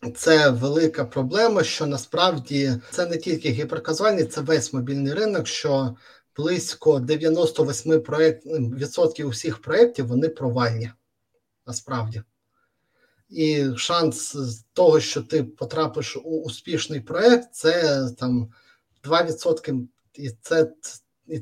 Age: 30-49